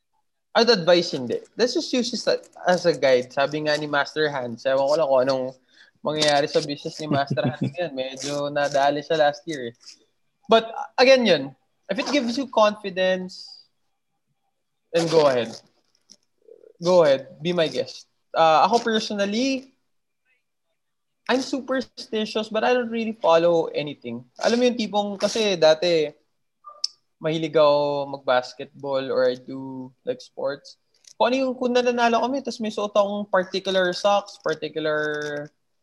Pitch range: 150-235 Hz